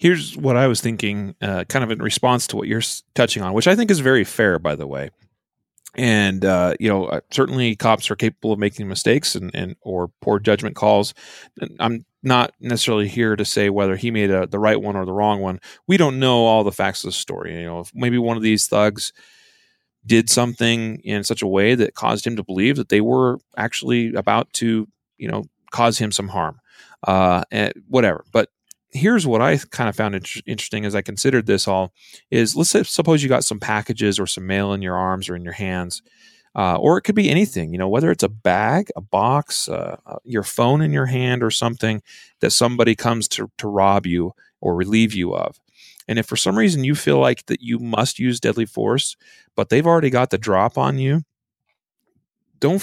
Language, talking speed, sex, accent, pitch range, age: English, 215 wpm, male, American, 100-125 Hz, 30-49